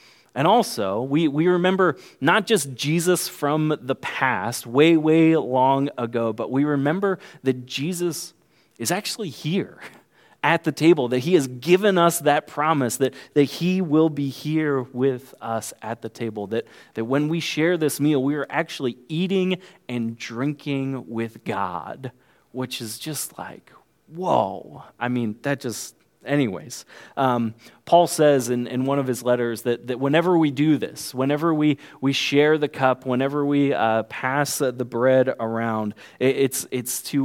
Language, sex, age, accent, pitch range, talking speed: English, male, 30-49, American, 115-150 Hz, 165 wpm